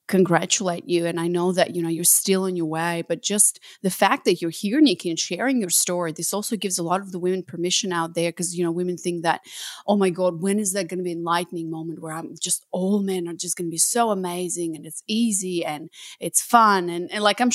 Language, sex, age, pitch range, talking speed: English, female, 30-49, 175-265 Hz, 255 wpm